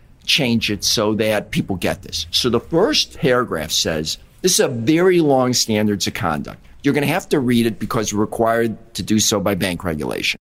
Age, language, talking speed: 50-69, English, 210 wpm